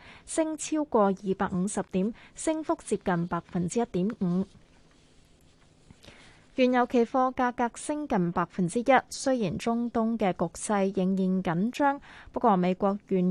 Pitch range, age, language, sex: 185-235 Hz, 20-39, Chinese, female